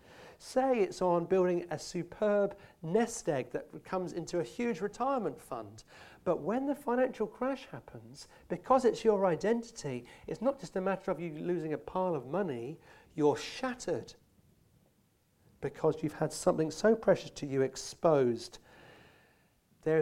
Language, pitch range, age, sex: English, 135-195 Hz, 40-59, male